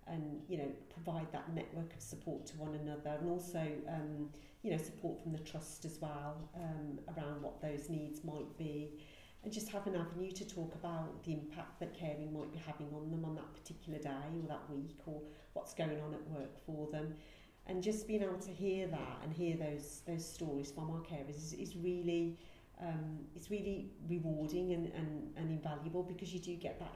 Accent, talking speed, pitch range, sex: British, 205 wpm, 150-170 Hz, female